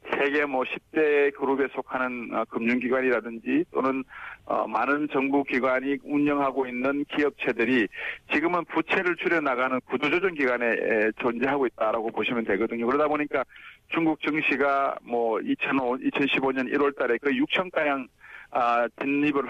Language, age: Korean, 40-59